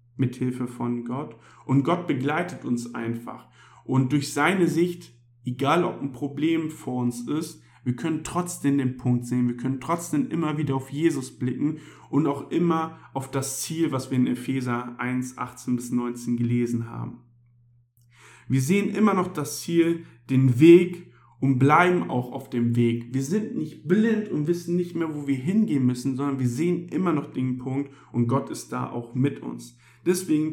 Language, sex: German, male